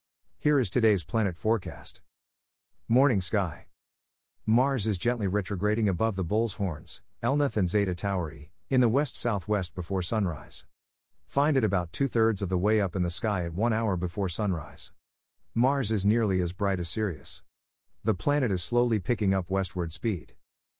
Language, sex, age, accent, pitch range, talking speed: English, male, 50-69, American, 90-115 Hz, 165 wpm